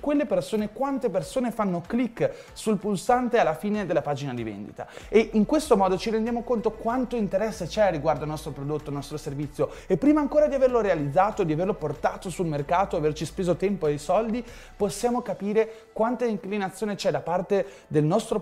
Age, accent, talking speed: 20-39, native, 180 wpm